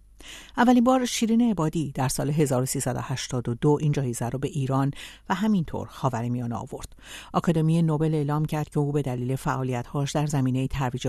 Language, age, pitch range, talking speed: Persian, 60-79, 130-175 Hz, 150 wpm